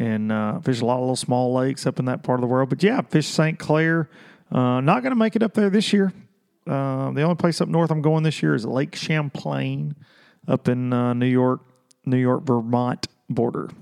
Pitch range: 130-185 Hz